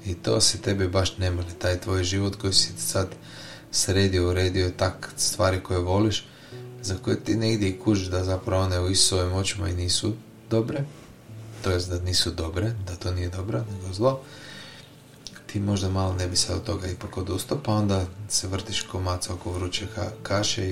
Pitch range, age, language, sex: 90-110 Hz, 20-39, Croatian, male